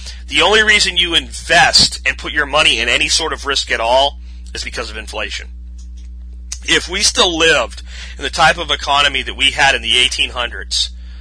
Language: English